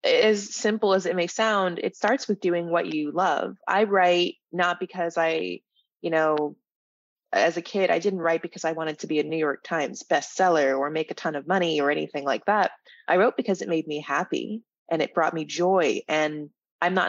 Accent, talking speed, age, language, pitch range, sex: American, 215 wpm, 20-39, English, 155-195 Hz, female